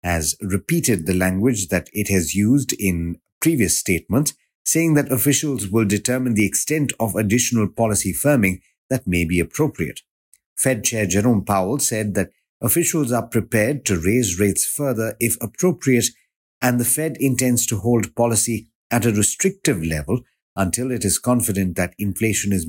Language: English